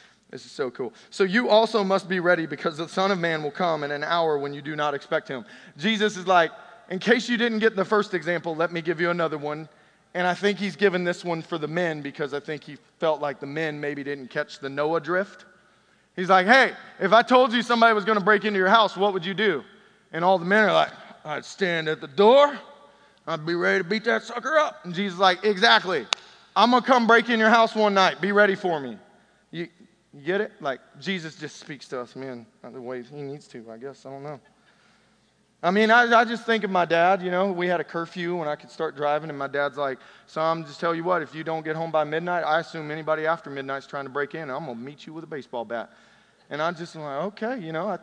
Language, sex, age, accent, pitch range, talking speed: English, male, 30-49, American, 150-200 Hz, 260 wpm